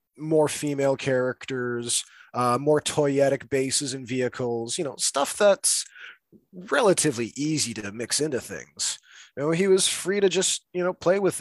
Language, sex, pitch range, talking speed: English, male, 125-155 Hz, 160 wpm